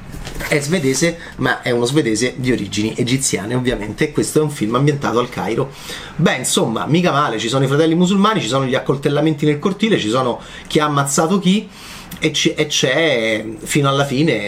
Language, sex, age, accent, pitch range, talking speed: Italian, male, 30-49, native, 130-180 Hz, 185 wpm